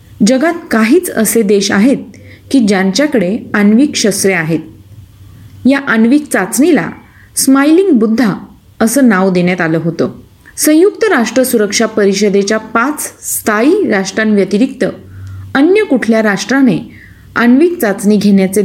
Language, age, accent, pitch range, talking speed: Marathi, 30-49, native, 195-260 Hz, 105 wpm